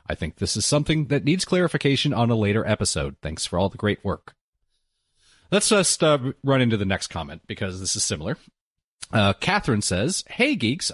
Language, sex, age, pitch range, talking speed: English, male, 30-49, 100-140 Hz, 190 wpm